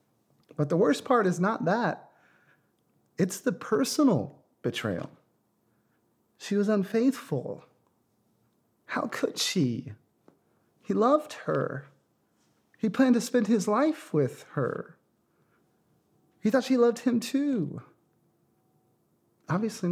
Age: 30-49